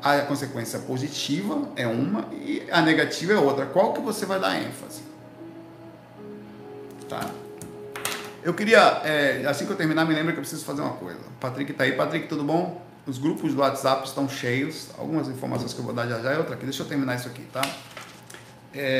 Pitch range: 135-170 Hz